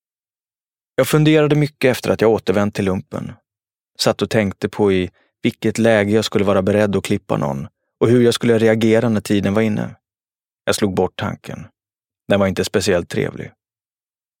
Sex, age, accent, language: male, 30-49, native, Swedish